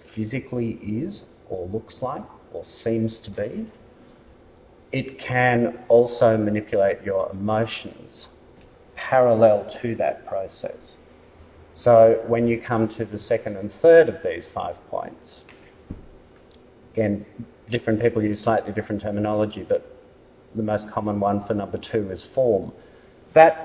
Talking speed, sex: 125 wpm, male